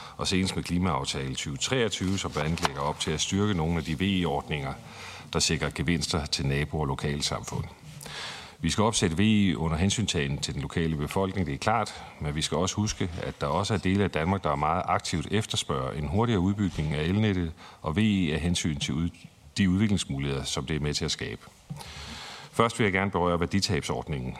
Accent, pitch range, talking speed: native, 75-95 Hz, 185 wpm